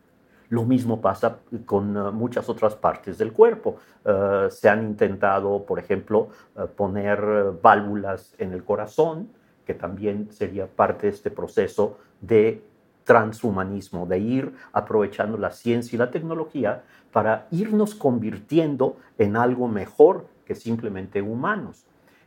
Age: 50-69